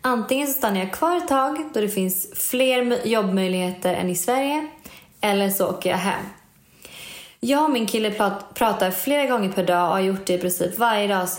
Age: 20-39